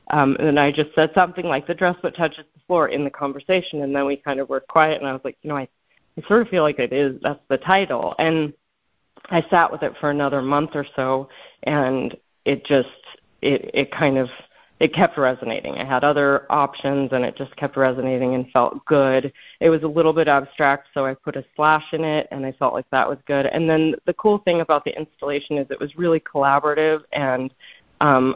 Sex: female